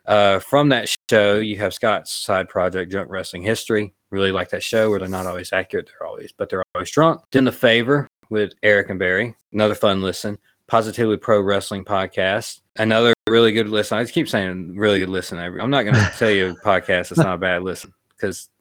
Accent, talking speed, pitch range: American, 215 wpm, 95-110 Hz